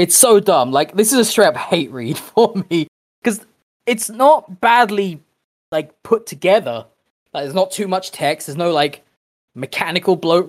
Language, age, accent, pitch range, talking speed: English, 20-39, British, 140-200 Hz, 175 wpm